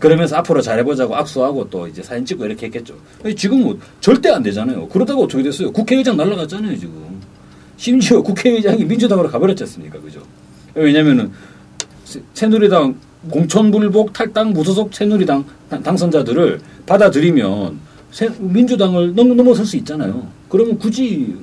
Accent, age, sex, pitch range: native, 40-59, male, 160-230 Hz